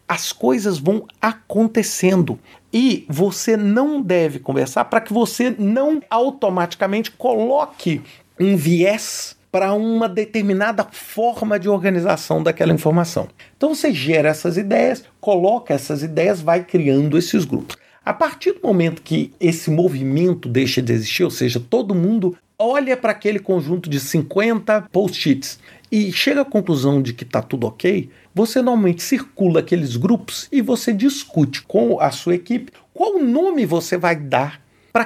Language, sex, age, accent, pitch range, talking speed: Portuguese, male, 50-69, Brazilian, 150-225 Hz, 145 wpm